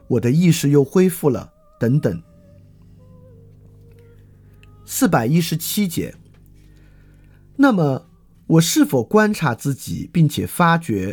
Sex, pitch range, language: male, 110-170 Hz, Chinese